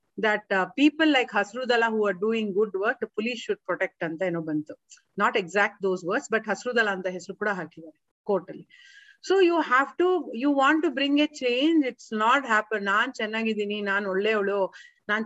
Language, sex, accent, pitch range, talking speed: Kannada, female, native, 195-280 Hz, 195 wpm